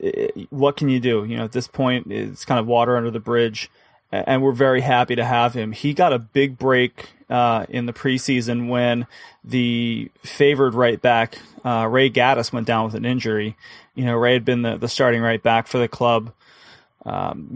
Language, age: English, 20-39